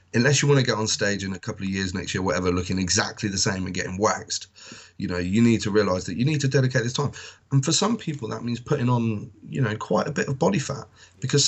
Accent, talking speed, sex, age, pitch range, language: British, 270 wpm, male, 30-49, 100-140 Hz, English